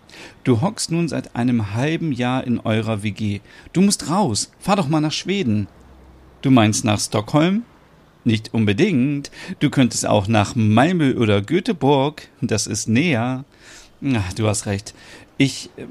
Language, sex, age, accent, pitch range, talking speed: German, male, 40-59, German, 105-150 Hz, 145 wpm